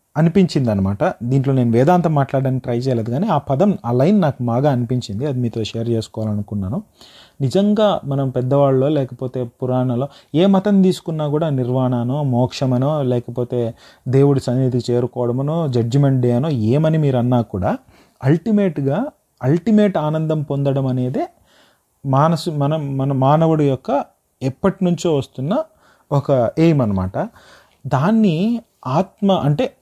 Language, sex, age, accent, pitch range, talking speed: Telugu, male, 30-49, native, 125-165 Hz, 115 wpm